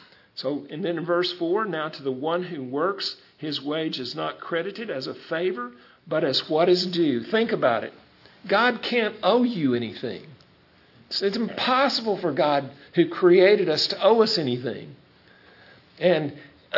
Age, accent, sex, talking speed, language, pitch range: 50-69, American, male, 165 wpm, English, 135-175 Hz